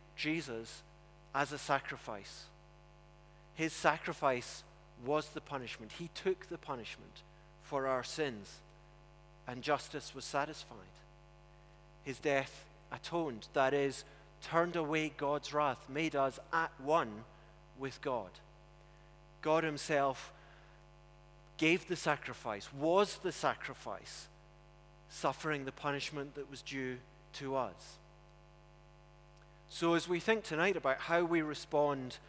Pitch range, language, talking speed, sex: 145-170 Hz, English, 110 wpm, male